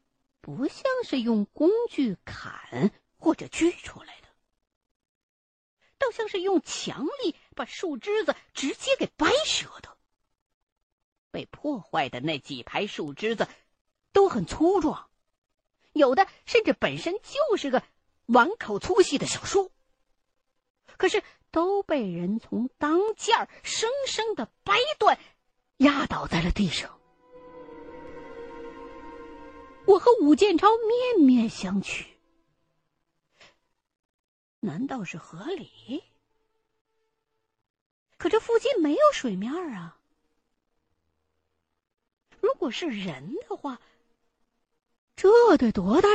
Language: Chinese